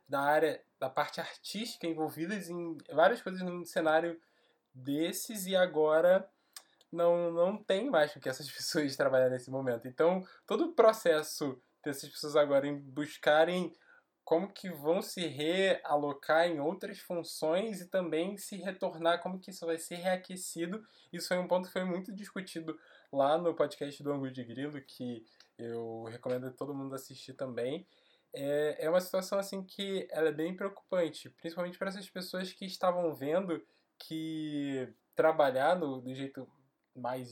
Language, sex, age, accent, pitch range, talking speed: Portuguese, male, 10-29, Brazilian, 140-180 Hz, 155 wpm